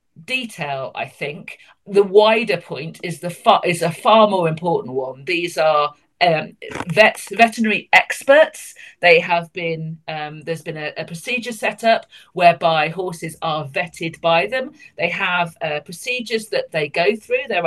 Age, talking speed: 40-59, 160 wpm